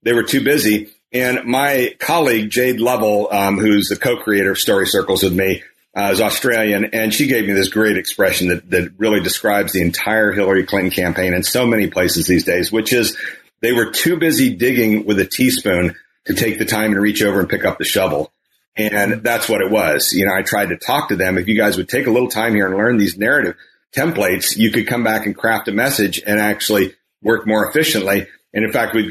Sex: male